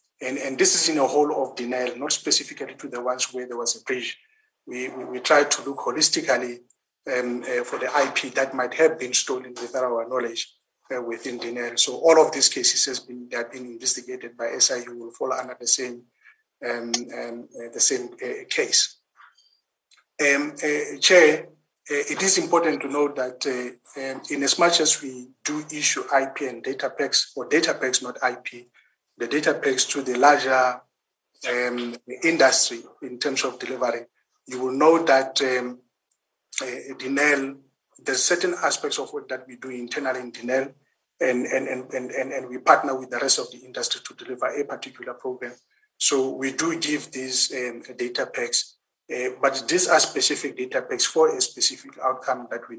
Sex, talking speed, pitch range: male, 190 wpm, 125-150 Hz